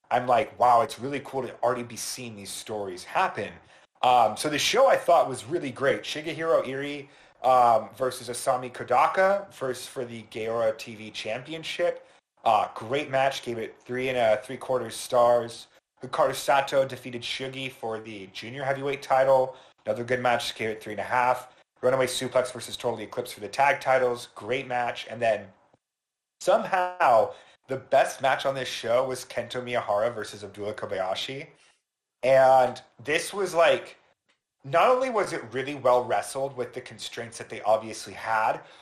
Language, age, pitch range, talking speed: English, 30-49, 120-140 Hz, 165 wpm